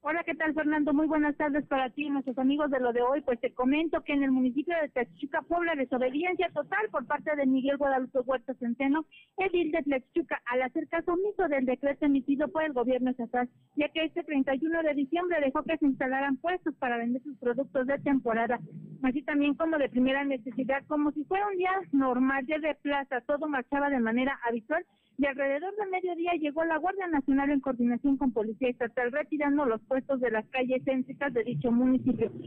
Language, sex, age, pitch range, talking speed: Spanish, female, 50-69, 260-315 Hz, 200 wpm